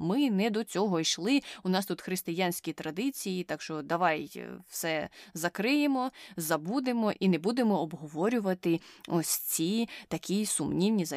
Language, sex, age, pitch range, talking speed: Ukrainian, female, 20-39, 170-220 Hz, 135 wpm